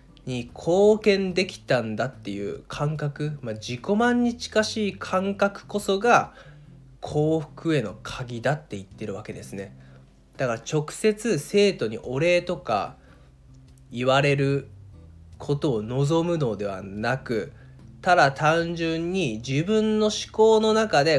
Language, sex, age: Japanese, male, 20-39